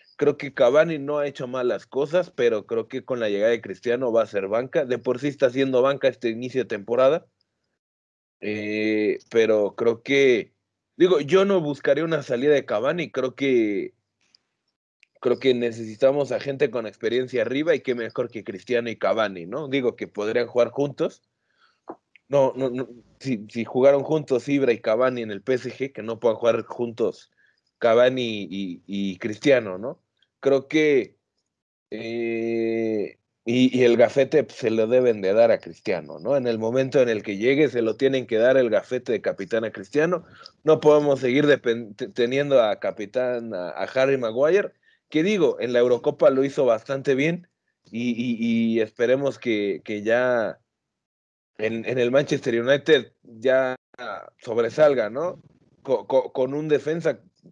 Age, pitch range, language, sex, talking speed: 30-49, 115-140 Hz, Spanish, male, 170 wpm